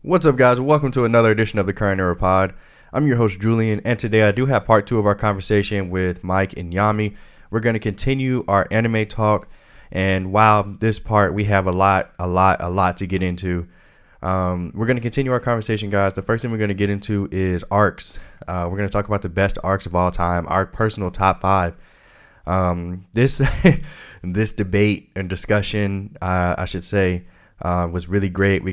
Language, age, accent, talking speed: English, 20-39, American, 215 wpm